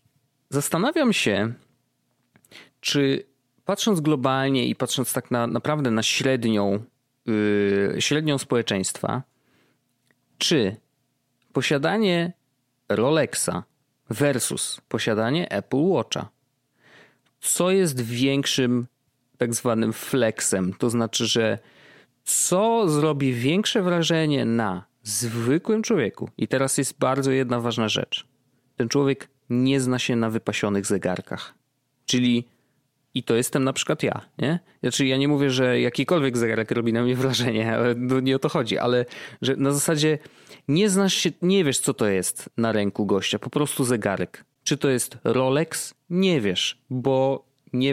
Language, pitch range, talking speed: Polish, 115-145 Hz, 130 wpm